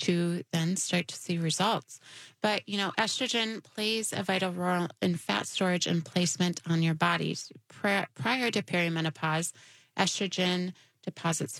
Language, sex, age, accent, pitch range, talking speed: English, female, 30-49, American, 160-195 Hz, 140 wpm